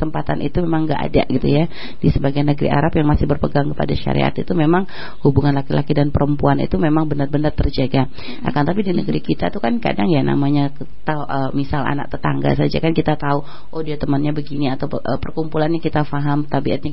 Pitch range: 140-160 Hz